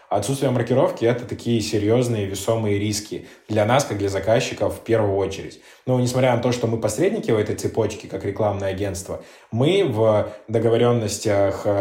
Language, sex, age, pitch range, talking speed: Russian, male, 20-39, 105-125 Hz, 160 wpm